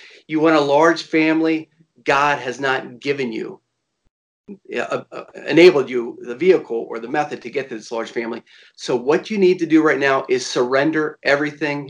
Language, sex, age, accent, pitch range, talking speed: English, male, 40-59, American, 135-180 Hz, 180 wpm